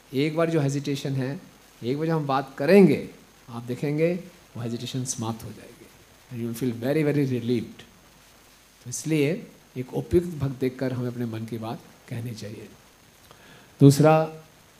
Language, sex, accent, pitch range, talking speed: Hindi, male, native, 125-170 Hz, 150 wpm